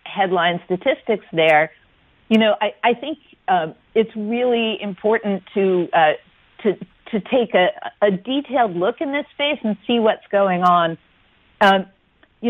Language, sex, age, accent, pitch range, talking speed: English, female, 50-69, American, 175-220 Hz, 150 wpm